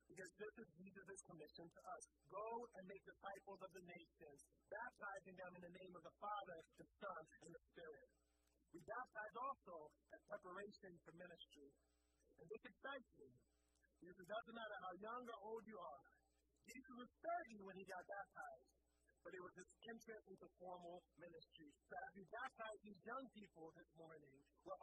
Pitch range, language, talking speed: 175-230 Hz, English, 165 wpm